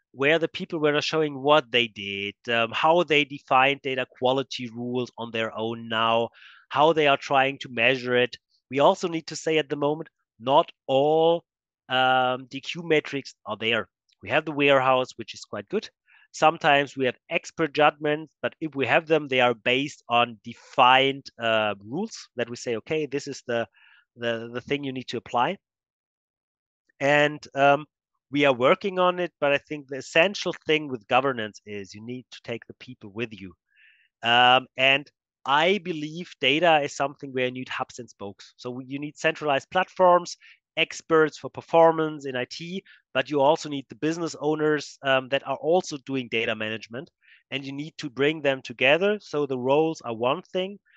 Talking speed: 180 wpm